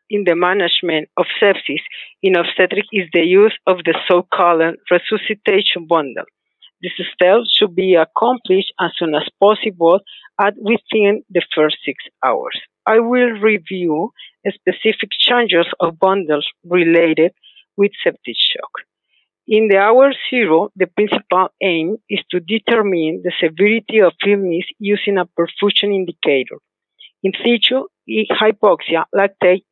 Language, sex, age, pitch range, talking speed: English, female, 50-69, 170-215 Hz, 125 wpm